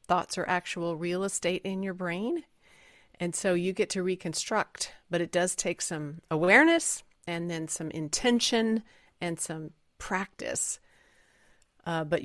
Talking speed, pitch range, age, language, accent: 140 wpm, 165-210 Hz, 40-59, English, American